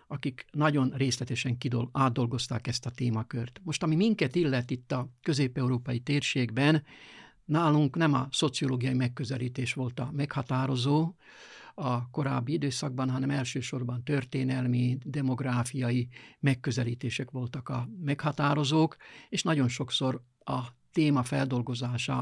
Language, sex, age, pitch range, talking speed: Hungarian, male, 60-79, 125-145 Hz, 110 wpm